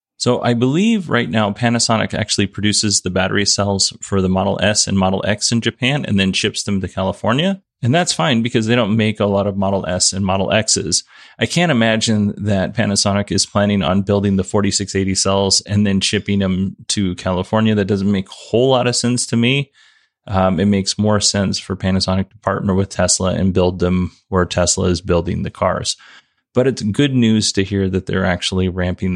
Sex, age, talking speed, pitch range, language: male, 30-49, 205 wpm, 95-110 Hz, English